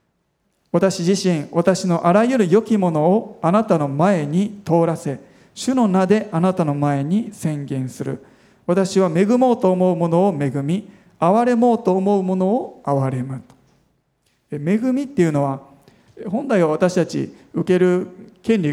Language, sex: Japanese, male